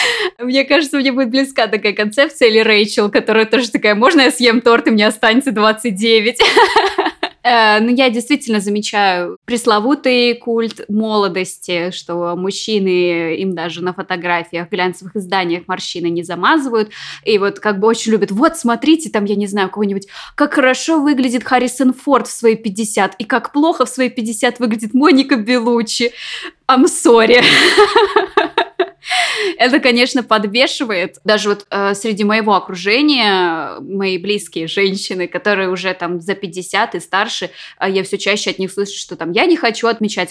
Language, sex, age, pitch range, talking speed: Russian, female, 20-39, 195-265 Hz, 155 wpm